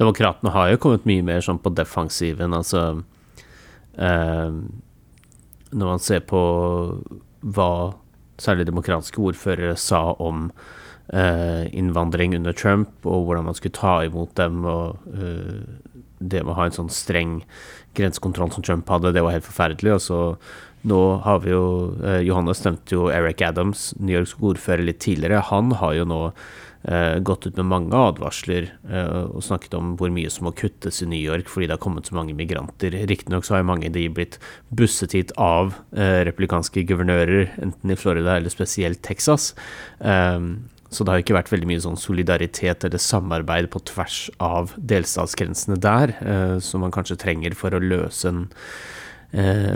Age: 30-49